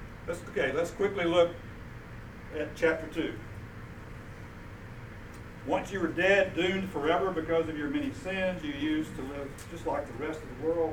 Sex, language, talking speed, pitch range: male, English, 165 wpm, 115-160 Hz